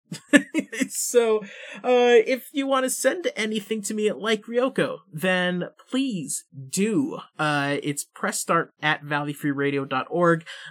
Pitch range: 150-215 Hz